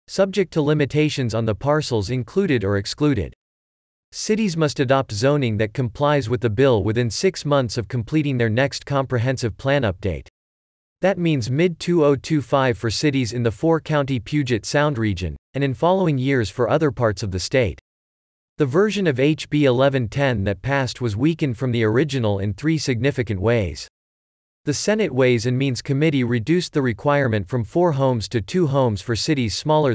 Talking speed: 165 wpm